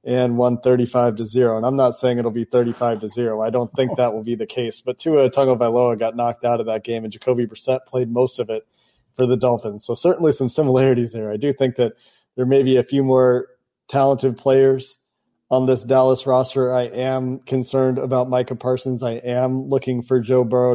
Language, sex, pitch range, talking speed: English, male, 120-135 Hz, 215 wpm